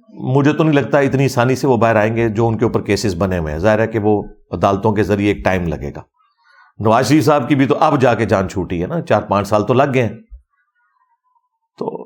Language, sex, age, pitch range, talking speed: Urdu, male, 50-69, 115-145 Hz, 245 wpm